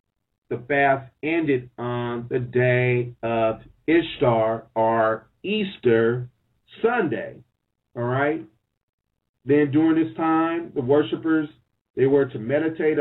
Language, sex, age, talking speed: English, male, 40-59, 105 wpm